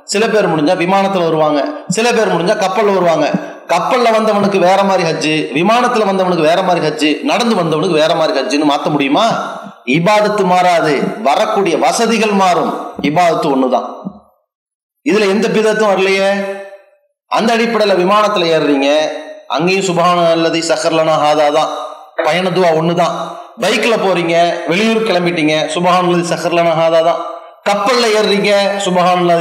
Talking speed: 100 wpm